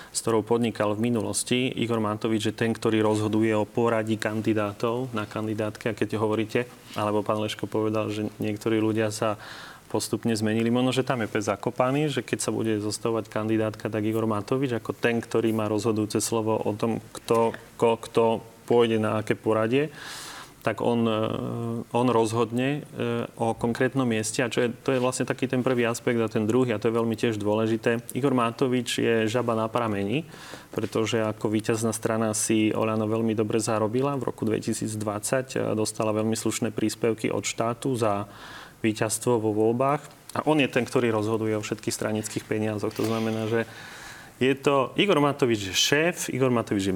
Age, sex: 30-49, male